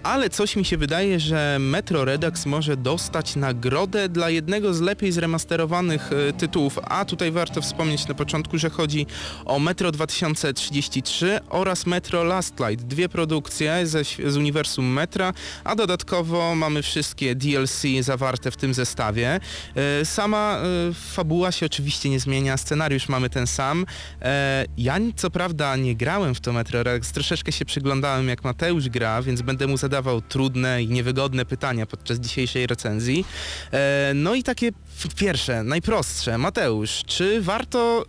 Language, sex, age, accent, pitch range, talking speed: Polish, male, 20-39, native, 125-170 Hz, 145 wpm